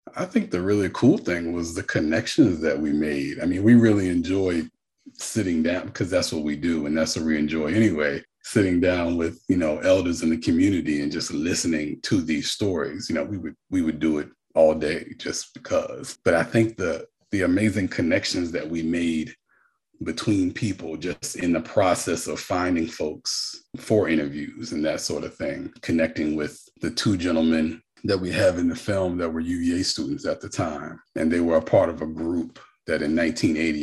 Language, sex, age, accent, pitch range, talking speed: English, male, 40-59, American, 80-105 Hz, 200 wpm